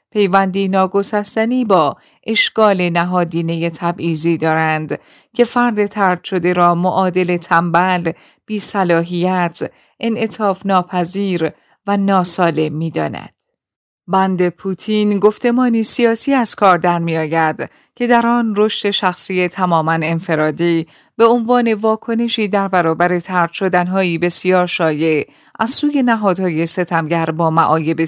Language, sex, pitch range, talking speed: Persian, female, 170-225 Hz, 105 wpm